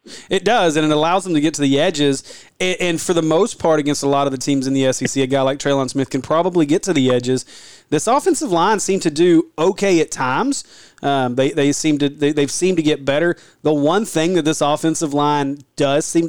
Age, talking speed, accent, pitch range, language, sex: 30-49, 245 wpm, American, 135-165 Hz, English, male